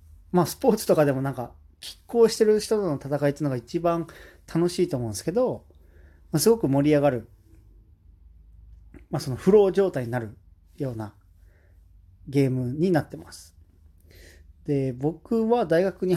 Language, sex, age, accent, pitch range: Japanese, male, 40-59, native, 100-165 Hz